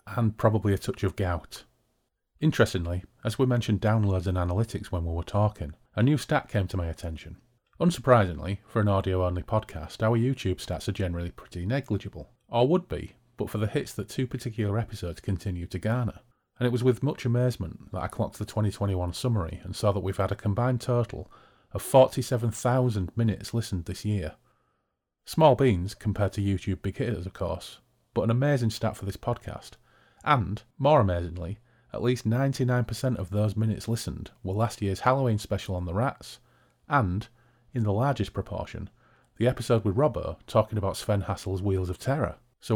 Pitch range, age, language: 95-120 Hz, 40-59, English